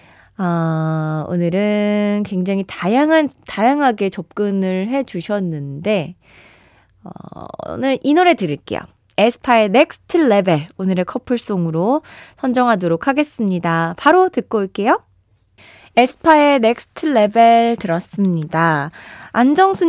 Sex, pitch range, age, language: female, 175-275 Hz, 20-39, Korean